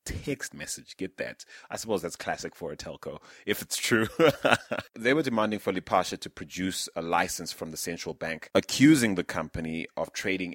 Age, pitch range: 30-49, 85-100 Hz